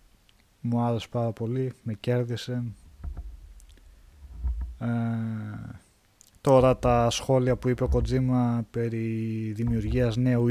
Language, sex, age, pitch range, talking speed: Greek, male, 20-39, 105-130 Hz, 95 wpm